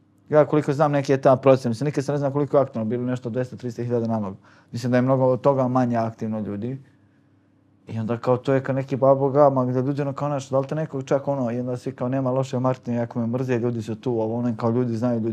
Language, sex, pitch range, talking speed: English, male, 115-135 Hz, 225 wpm